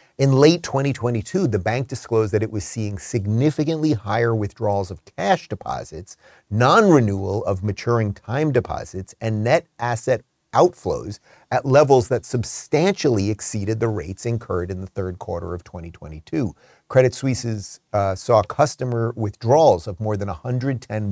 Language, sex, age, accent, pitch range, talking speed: English, male, 40-59, American, 100-125 Hz, 135 wpm